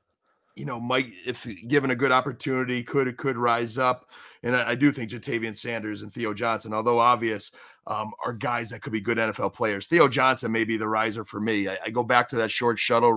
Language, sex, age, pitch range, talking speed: English, male, 30-49, 110-130 Hz, 225 wpm